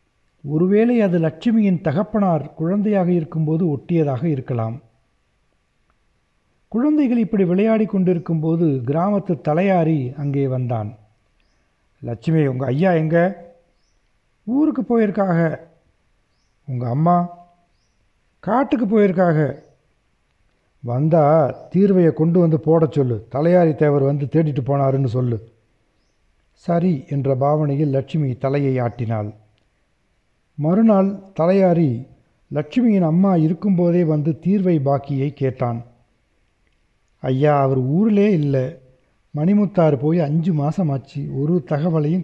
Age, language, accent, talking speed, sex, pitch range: 60-79, Tamil, native, 90 wpm, male, 130-175 Hz